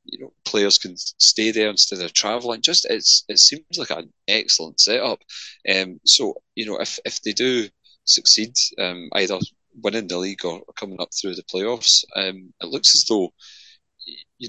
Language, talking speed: English, 180 wpm